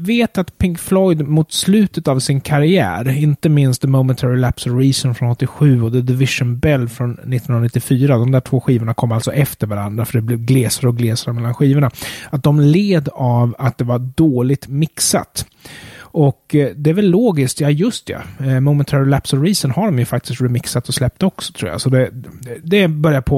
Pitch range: 120-150 Hz